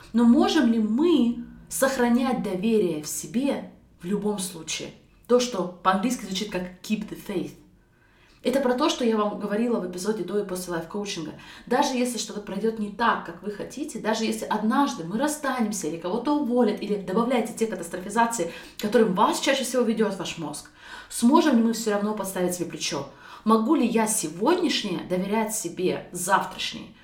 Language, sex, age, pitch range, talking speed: Russian, female, 20-39, 170-230 Hz, 165 wpm